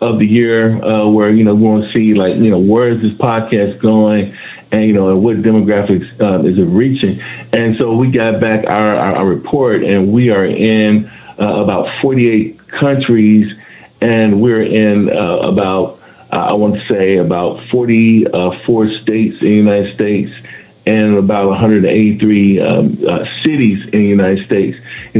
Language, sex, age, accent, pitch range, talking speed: English, male, 50-69, American, 105-125 Hz, 180 wpm